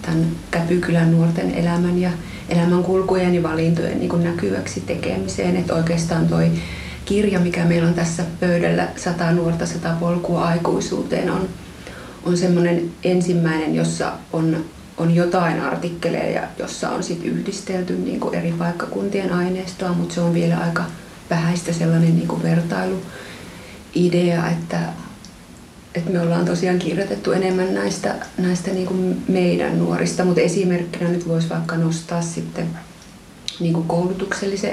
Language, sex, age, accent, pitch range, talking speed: Finnish, female, 30-49, native, 165-180 Hz, 125 wpm